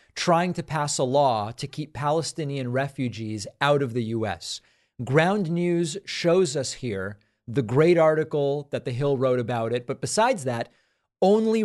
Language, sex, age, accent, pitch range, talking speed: English, male, 40-59, American, 125-155 Hz, 160 wpm